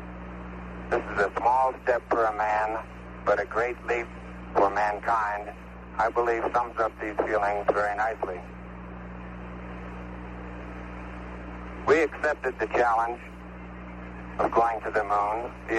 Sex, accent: male, American